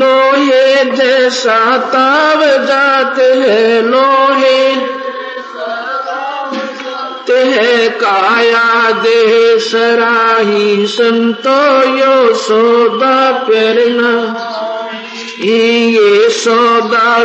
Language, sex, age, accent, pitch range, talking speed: Hindi, male, 50-69, native, 230-265 Hz, 55 wpm